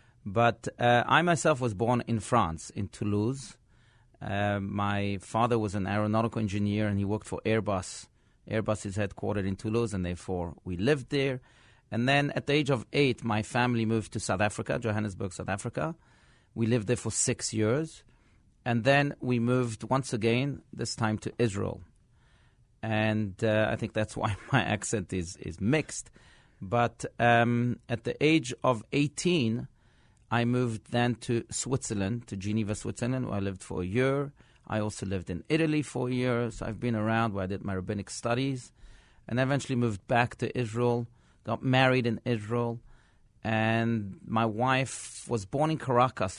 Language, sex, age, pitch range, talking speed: English, male, 40-59, 105-125 Hz, 170 wpm